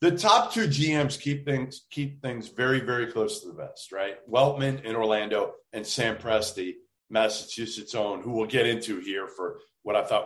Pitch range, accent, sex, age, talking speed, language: 115-190 Hz, American, male, 40-59, 185 wpm, English